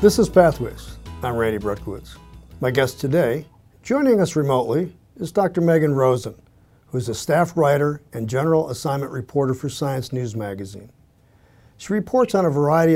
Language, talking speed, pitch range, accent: English, 155 wpm, 115-165 Hz, American